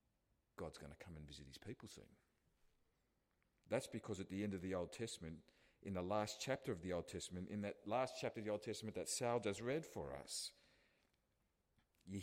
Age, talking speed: 40-59, 200 wpm